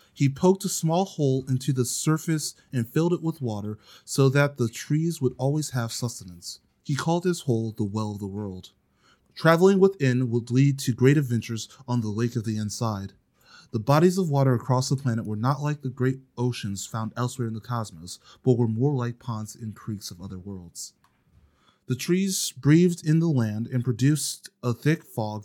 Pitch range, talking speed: 110-145 Hz, 195 wpm